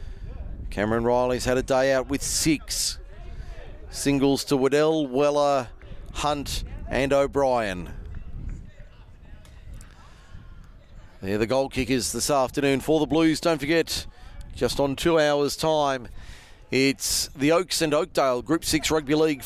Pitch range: 120-155 Hz